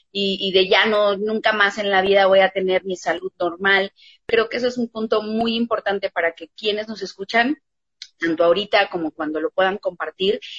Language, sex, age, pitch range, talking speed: Spanish, female, 30-49, 185-235 Hz, 205 wpm